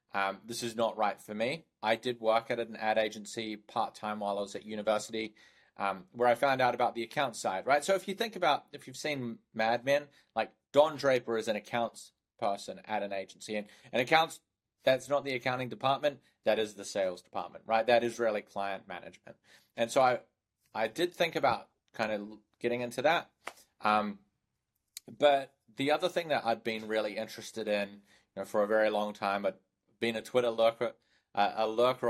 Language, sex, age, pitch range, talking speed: English, male, 30-49, 105-125 Hz, 200 wpm